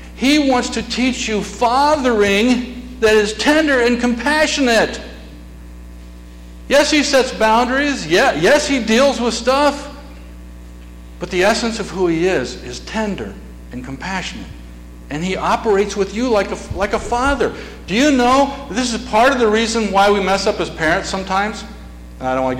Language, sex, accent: English, male, American